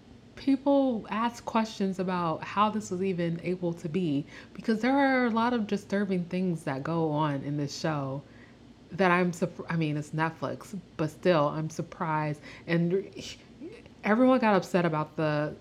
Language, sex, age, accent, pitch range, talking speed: English, female, 30-49, American, 145-180 Hz, 160 wpm